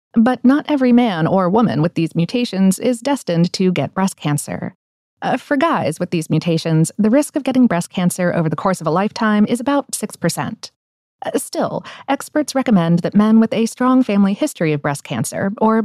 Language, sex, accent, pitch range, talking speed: English, female, American, 170-245 Hz, 195 wpm